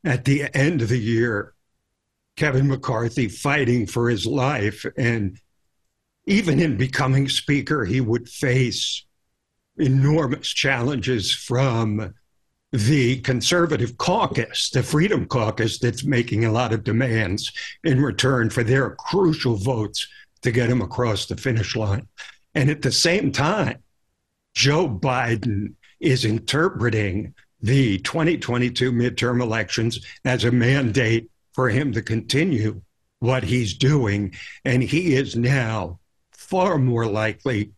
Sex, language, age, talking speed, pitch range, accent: male, English, 60-79, 125 wpm, 110-135 Hz, American